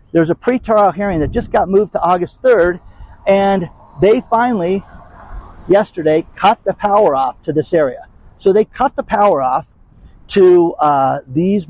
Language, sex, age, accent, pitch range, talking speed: English, male, 50-69, American, 140-190 Hz, 160 wpm